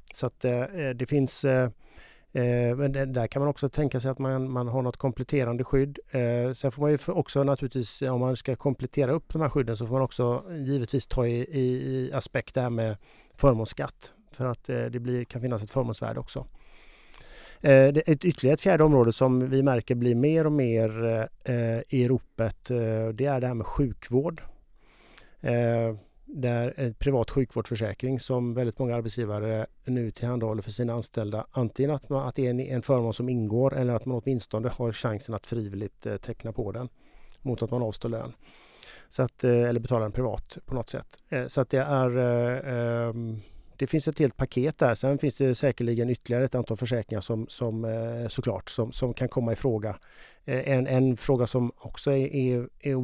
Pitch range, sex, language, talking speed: 115-135 Hz, male, Swedish, 190 wpm